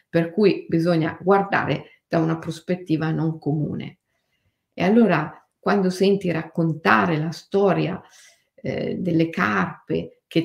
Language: Italian